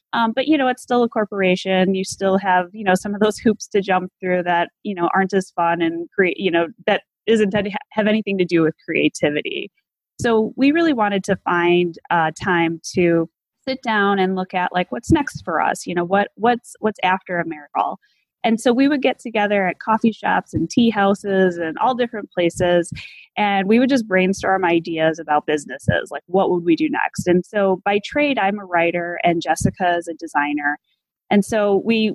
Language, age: English, 20-39